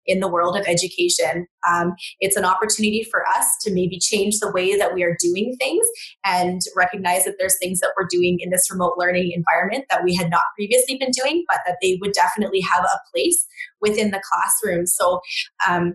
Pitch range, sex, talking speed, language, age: 185-230 Hz, female, 205 wpm, English, 20-39